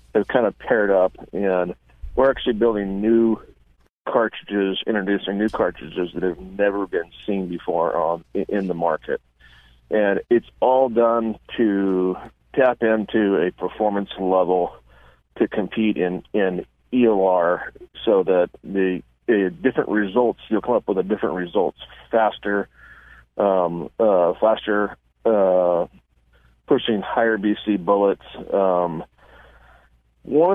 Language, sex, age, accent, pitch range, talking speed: English, male, 40-59, American, 90-110 Hz, 125 wpm